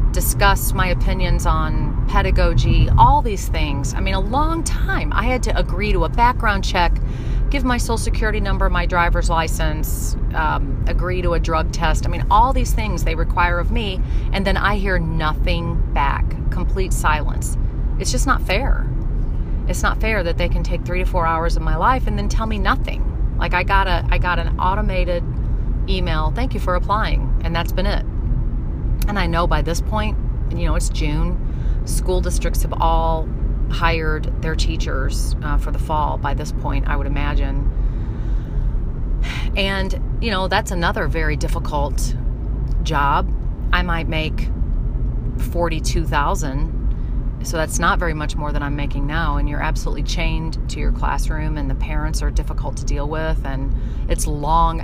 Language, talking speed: English, 170 wpm